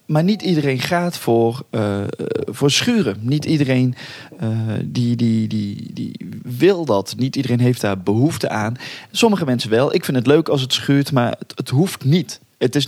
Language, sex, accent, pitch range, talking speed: Dutch, male, Dutch, 115-150 Hz, 170 wpm